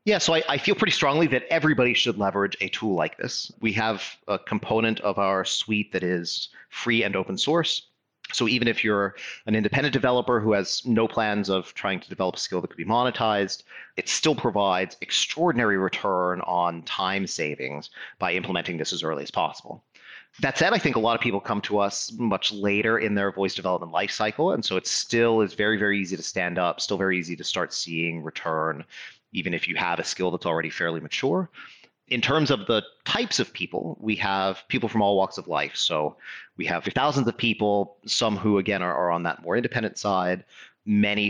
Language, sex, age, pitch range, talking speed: English, male, 30-49, 90-115 Hz, 205 wpm